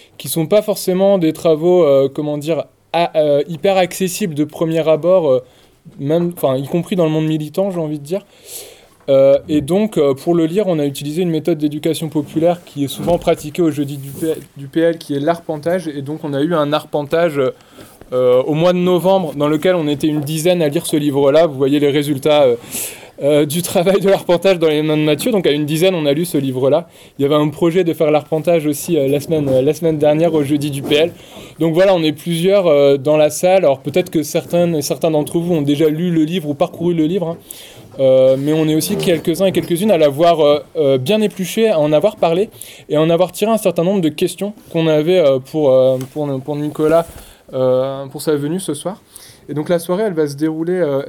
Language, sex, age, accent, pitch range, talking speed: French, male, 20-39, French, 150-175 Hz, 235 wpm